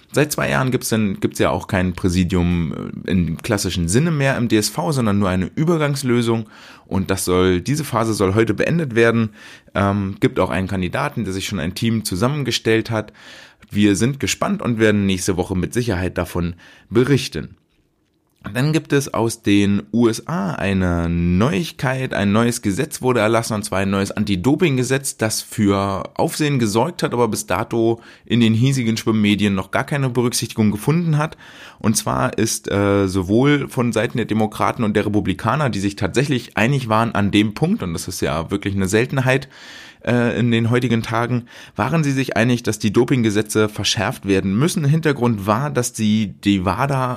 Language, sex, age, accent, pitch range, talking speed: German, male, 20-39, German, 100-120 Hz, 170 wpm